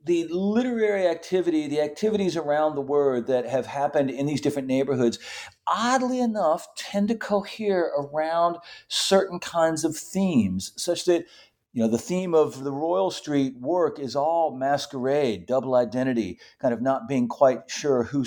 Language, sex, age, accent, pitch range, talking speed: English, male, 50-69, American, 130-180 Hz, 160 wpm